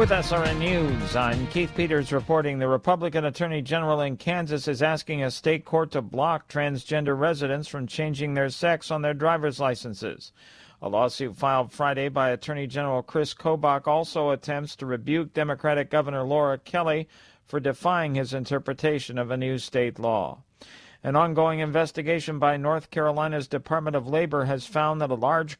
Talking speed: 165 wpm